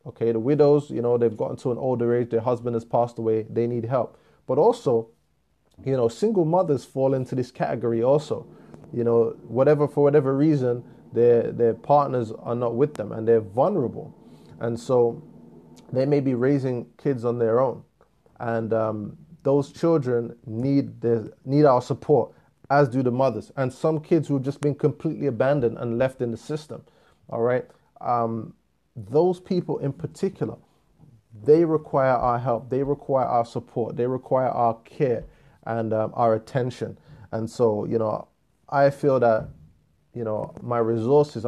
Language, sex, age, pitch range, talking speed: English, male, 20-39, 115-145 Hz, 170 wpm